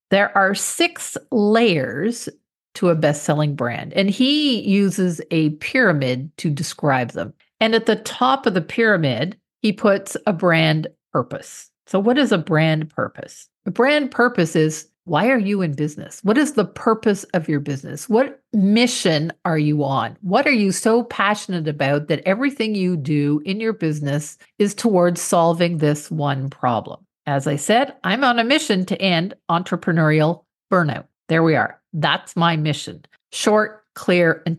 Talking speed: 165 wpm